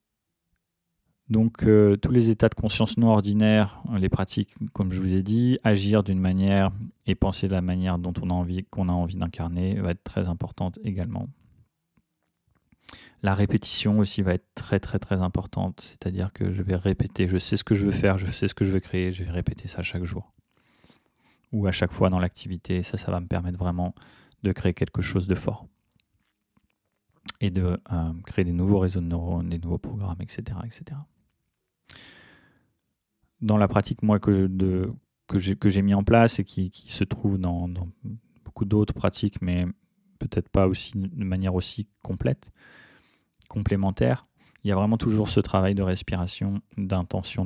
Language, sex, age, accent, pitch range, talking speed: French, male, 20-39, French, 90-105 Hz, 185 wpm